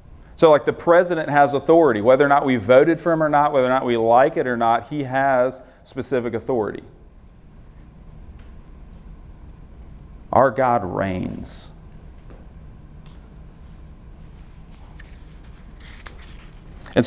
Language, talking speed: English, 110 wpm